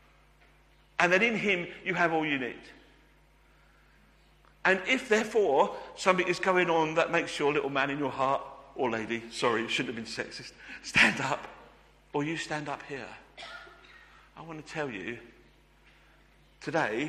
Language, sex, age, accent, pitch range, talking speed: English, male, 50-69, British, 130-175 Hz, 160 wpm